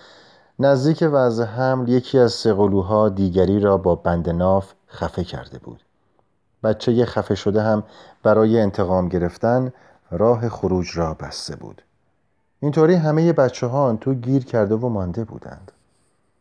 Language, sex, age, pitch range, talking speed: Persian, male, 30-49, 90-120 Hz, 135 wpm